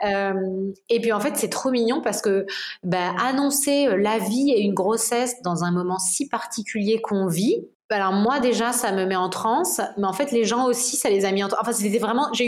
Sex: female